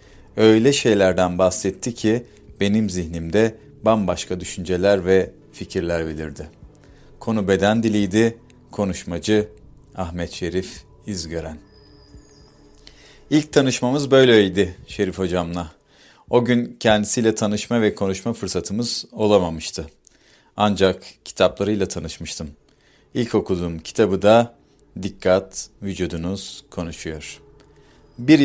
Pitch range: 90-110 Hz